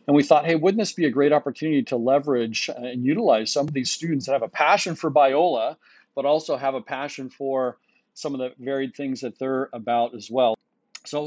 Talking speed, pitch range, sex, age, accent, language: 220 wpm, 125-150 Hz, male, 40-59, American, English